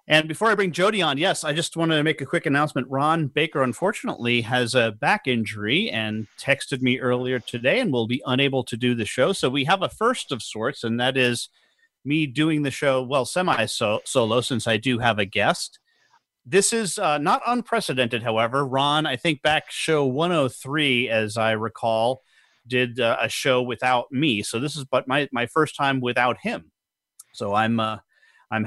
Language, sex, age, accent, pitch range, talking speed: English, male, 30-49, American, 125-155 Hz, 195 wpm